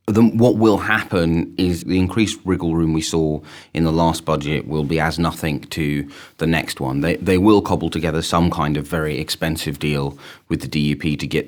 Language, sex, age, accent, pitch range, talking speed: English, male, 30-49, British, 75-90 Hz, 205 wpm